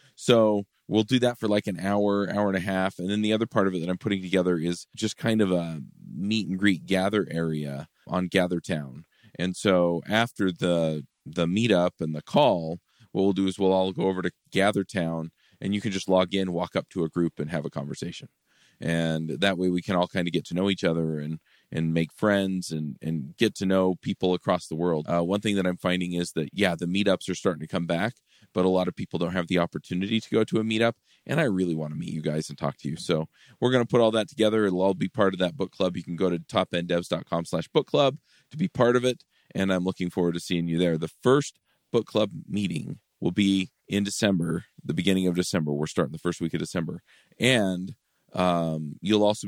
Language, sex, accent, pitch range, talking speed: English, male, American, 85-100 Hz, 240 wpm